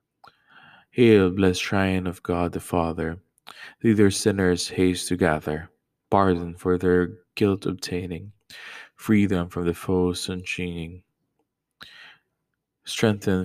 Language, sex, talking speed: English, male, 110 wpm